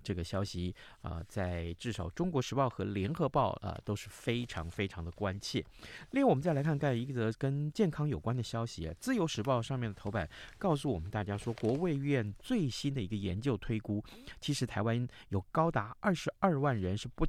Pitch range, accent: 100-150 Hz, native